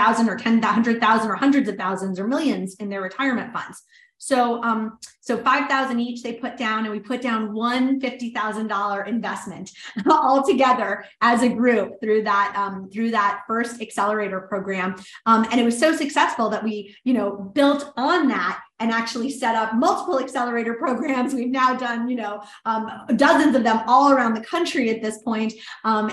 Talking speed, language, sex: 190 wpm, English, female